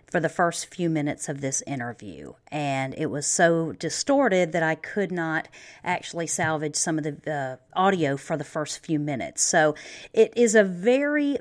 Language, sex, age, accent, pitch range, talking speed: English, female, 40-59, American, 155-195 Hz, 180 wpm